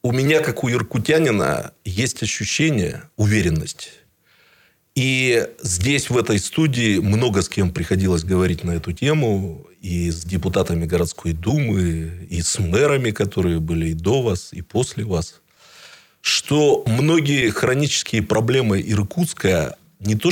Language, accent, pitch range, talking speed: Russian, native, 90-125 Hz, 130 wpm